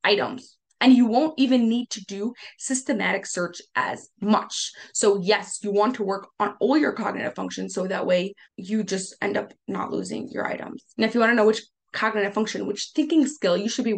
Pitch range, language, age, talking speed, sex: 195-250 Hz, English, 20-39, 210 wpm, female